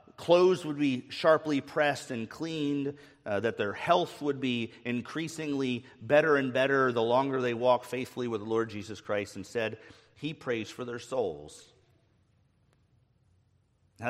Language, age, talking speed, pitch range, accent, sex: English, 40-59, 150 wpm, 100-125 Hz, American, male